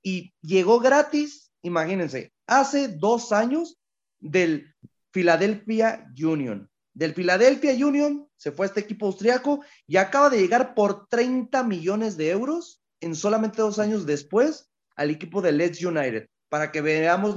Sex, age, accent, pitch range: male, 30-49, Mexican, 165-210 Hz